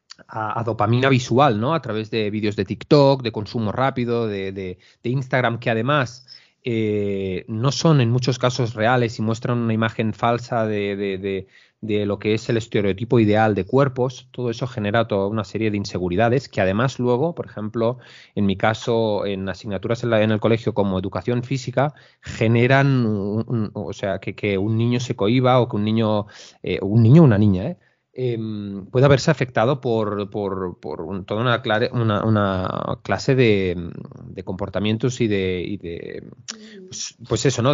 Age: 30-49